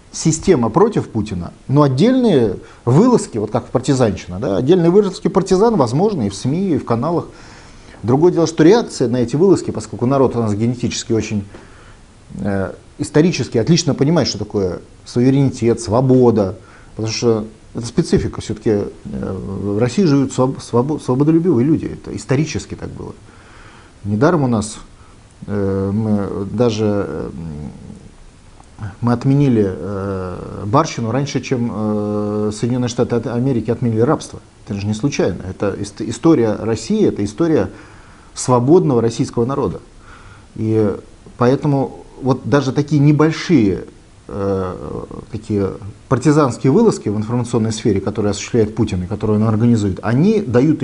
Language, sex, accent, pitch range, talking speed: Russian, male, native, 105-135 Hz, 120 wpm